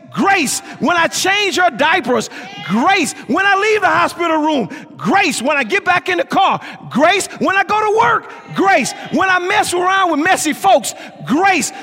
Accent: American